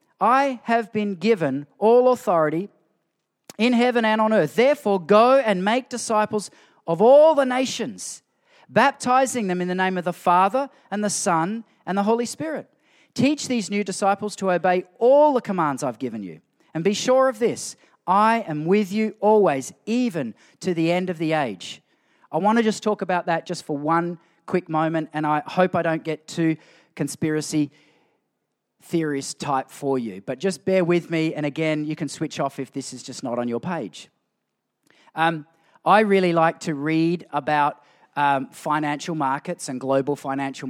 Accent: Australian